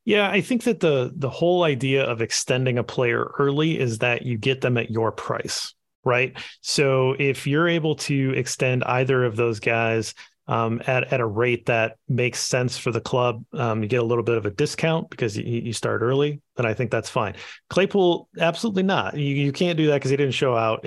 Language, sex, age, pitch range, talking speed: English, male, 30-49, 115-140 Hz, 215 wpm